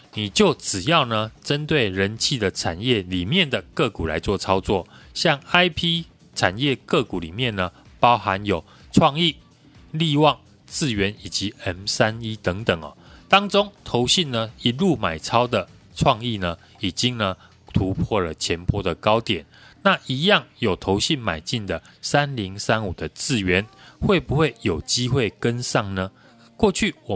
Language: Chinese